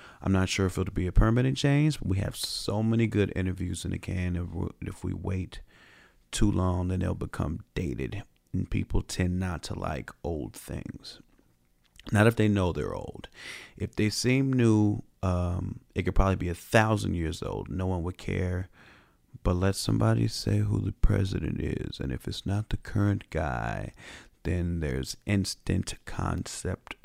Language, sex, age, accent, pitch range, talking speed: English, male, 30-49, American, 90-105 Hz, 175 wpm